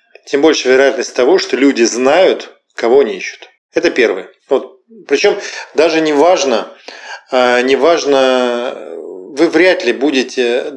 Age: 40-59